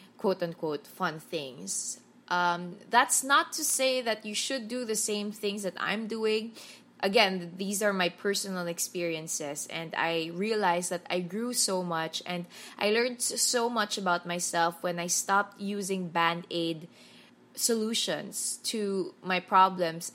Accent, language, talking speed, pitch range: Filipino, English, 145 wpm, 165-210 Hz